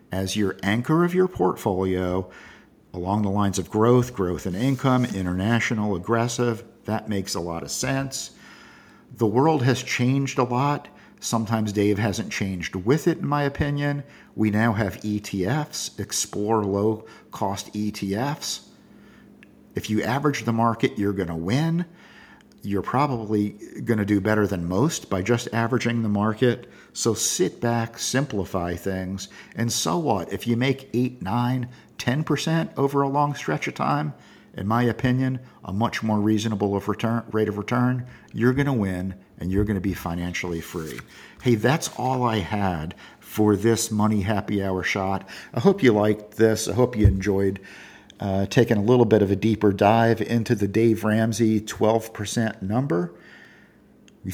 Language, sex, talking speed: English, male, 160 wpm